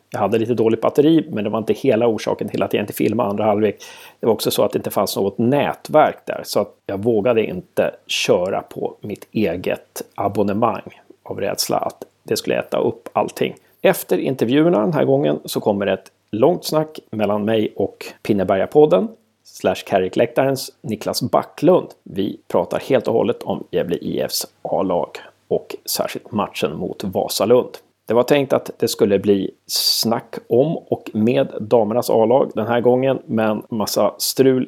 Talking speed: 170 wpm